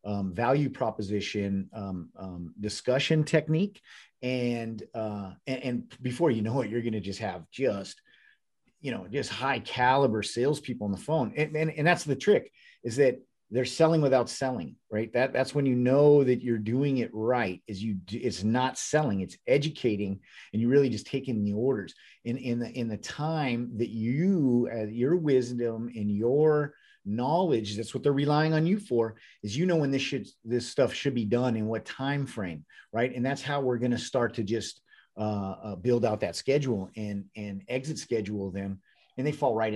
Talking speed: 195 wpm